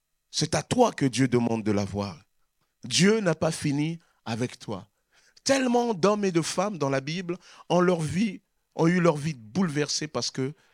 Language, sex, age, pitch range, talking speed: French, male, 40-59, 115-170 Hz, 180 wpm